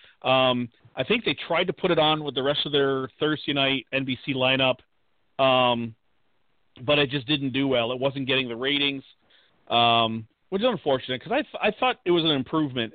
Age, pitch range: 40-59, 125-150 Hz